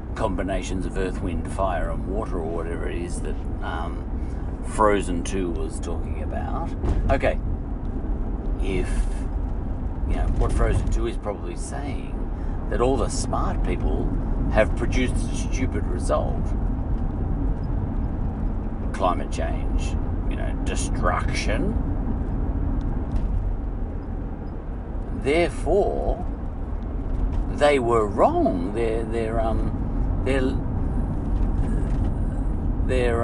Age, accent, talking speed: 50-69, Australian, 90 wpm